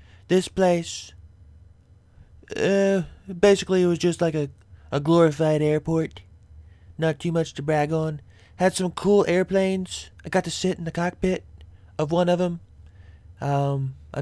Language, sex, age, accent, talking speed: English, male, 20-39, American, 145 wpm